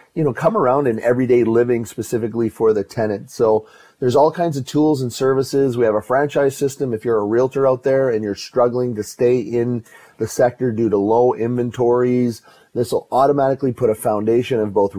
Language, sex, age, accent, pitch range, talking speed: English, male, 30-49, American, 110-135 Hz, 200 wpm